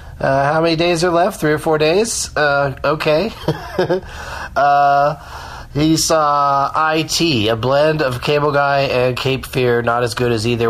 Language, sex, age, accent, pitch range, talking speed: English, male, 30-49, American, 105-145 Hz, 165 wpm